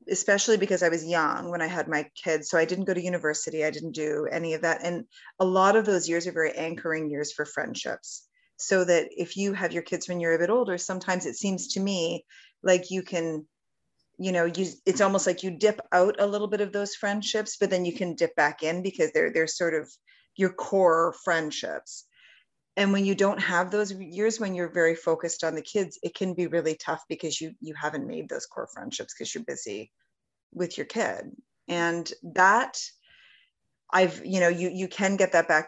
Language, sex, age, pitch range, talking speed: English, female, 30-49, 165-200 Hz, 215 wpm